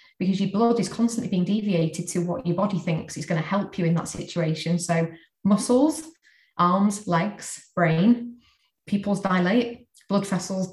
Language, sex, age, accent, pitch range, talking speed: English, female, 20-39, British, 170-200 Hz, 160 wpm